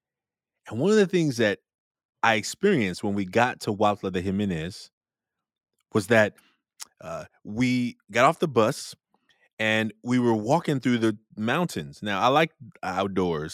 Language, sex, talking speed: English, male, 150 wpm